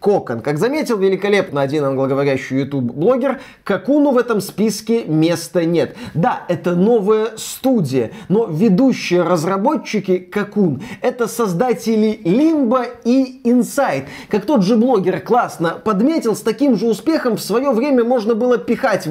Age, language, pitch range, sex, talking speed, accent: 20-39, Russian, 185-255 Hz, male, 130 wpm, native